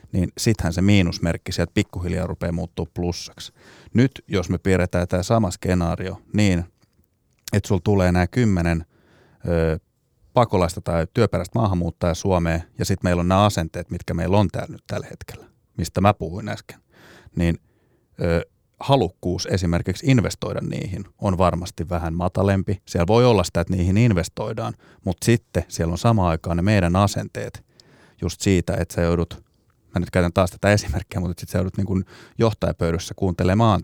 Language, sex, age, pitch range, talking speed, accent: Finnish, male, 30-49, 85-105 Hz, 160 wpm, native